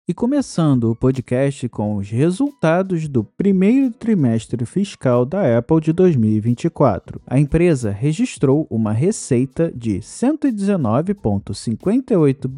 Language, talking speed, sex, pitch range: Portuguese, 105 wpm, male, 120-200 Hz